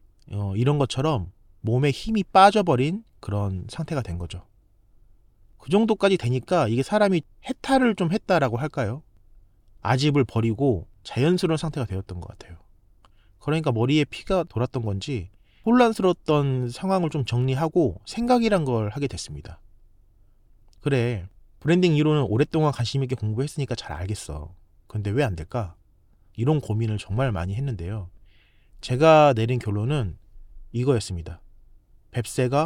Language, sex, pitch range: Korean, male, 100-145 Hz